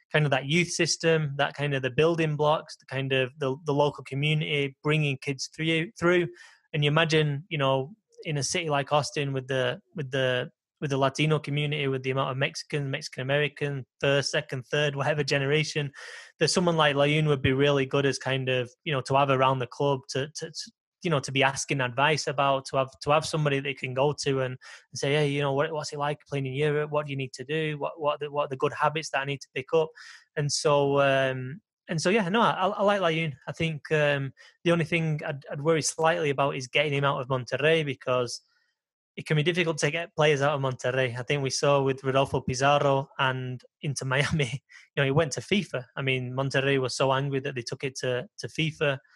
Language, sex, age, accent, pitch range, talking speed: English, male, 20-39, British, 135-155 Hz, 230 wpm